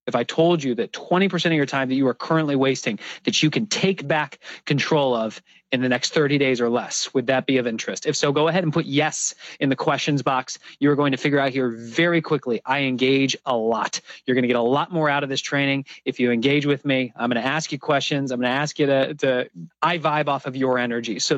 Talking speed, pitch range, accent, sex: 260 wpm, 130-155 Hz, American, male